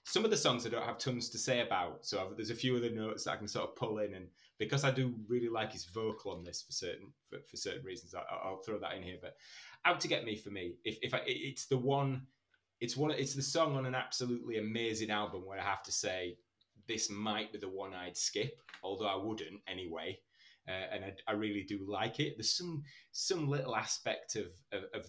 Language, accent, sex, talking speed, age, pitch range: English, British, male, 245 wpm, 20-39, 95-125 Hz